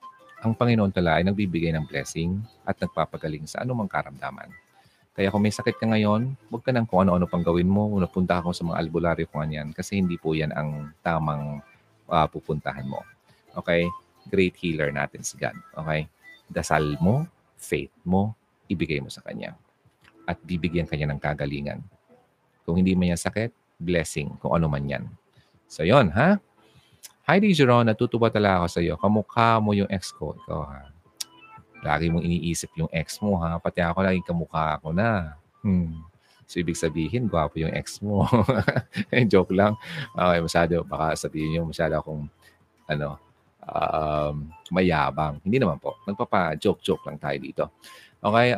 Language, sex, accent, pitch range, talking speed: Filipino, male, native, 80-110 Hz, 160 wpm